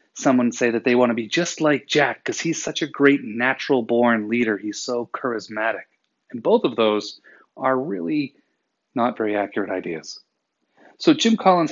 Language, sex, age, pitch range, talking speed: English, male, 30-49, 115-160 Hz, 170 wpm